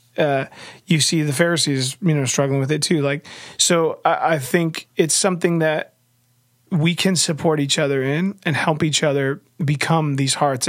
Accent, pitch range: American, 140-160 Hz